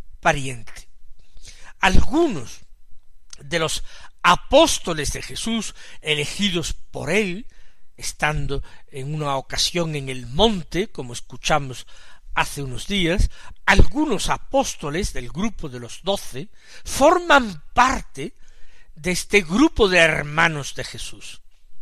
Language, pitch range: Spanish, 145-210 Hz